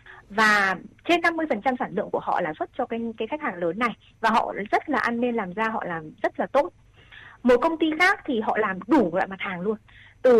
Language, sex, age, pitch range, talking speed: Vietnamese, female, 20-39, 205-290 Hz, 240 wpm